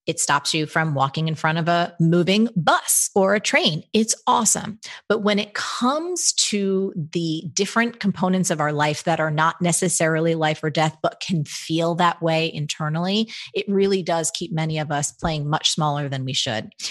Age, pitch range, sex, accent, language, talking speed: 30-49, 165-230 Hz, female, American, English, 190 wpm